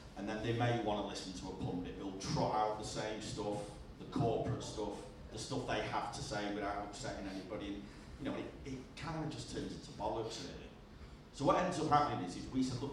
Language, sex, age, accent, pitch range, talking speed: English, male, 40-59, British, 100-130 Hz, 230 wpm